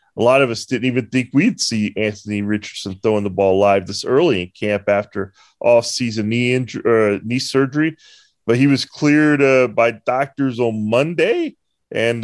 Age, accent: 30-49, American